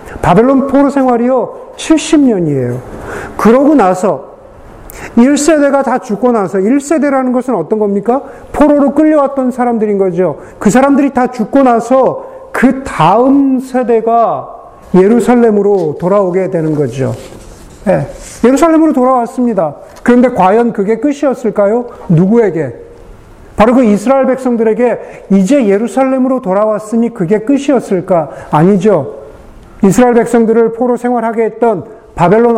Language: Korean